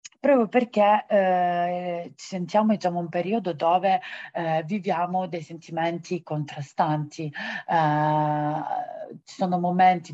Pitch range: 160-195 Hz